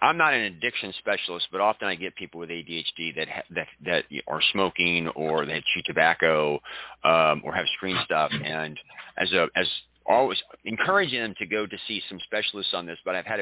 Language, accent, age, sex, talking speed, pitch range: English, American, 40-59, male, 200 wpm, 85-95 Hz